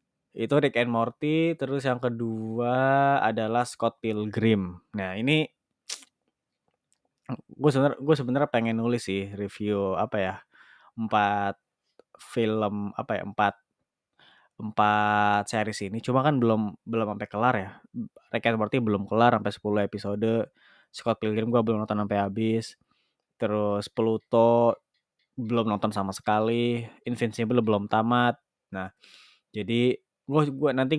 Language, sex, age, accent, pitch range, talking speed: Indonesian, male, 20-39, native, 105-125 Hz, 125 wpm